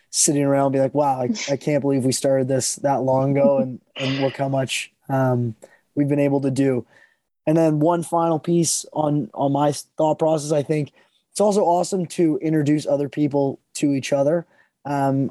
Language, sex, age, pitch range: English, male, 20-39, 135-155 Hz